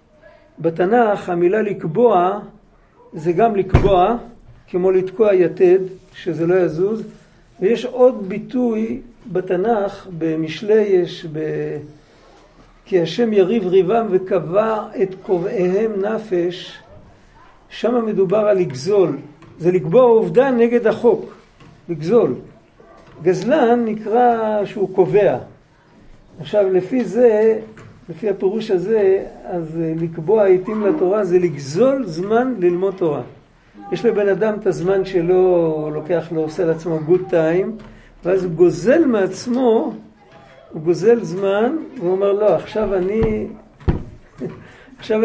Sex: male